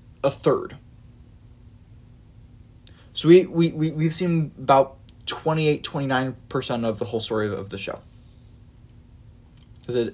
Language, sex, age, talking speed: English, male, 20-39, 140 wpm